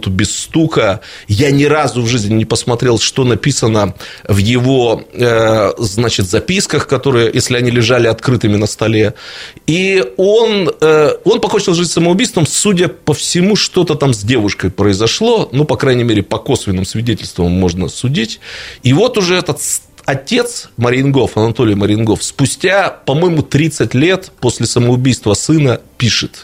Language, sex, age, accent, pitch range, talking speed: Russian, male, 30-49, native, 115-155 Hz, 140 wpm